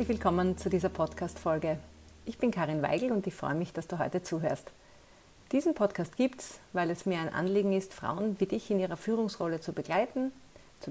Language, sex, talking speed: German, female, 195 wpm